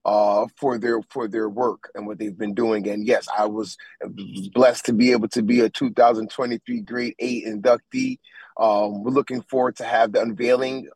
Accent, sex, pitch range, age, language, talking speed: American, male, 110-135 Hz, 30-49, English, 185 wpm